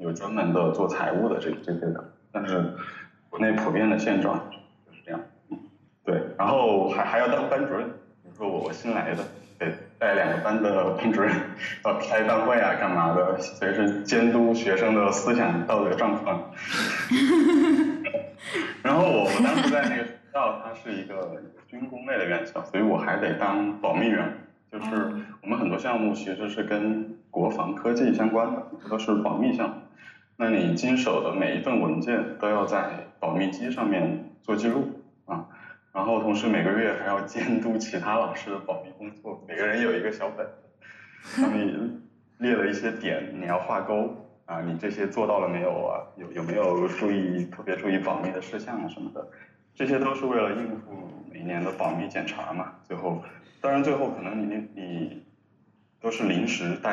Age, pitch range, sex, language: 20-39, 95-120 Hz, male, Chinese